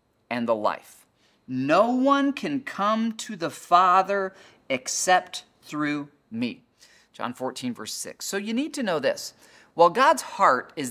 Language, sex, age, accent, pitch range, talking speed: English, male, 40-59, American, 130-195 Hz, 150 wpm